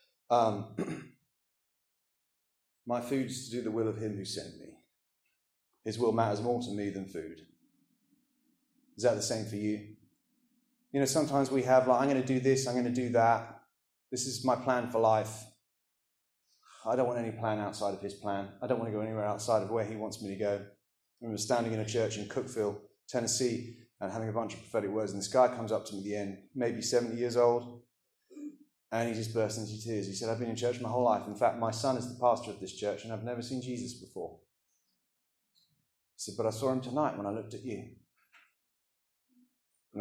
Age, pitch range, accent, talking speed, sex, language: 30-49, 105-130 Hz, British, 220 wpm, male, English